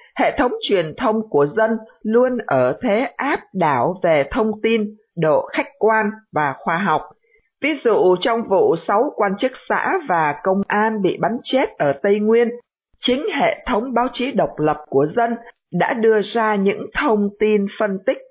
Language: Vietnamese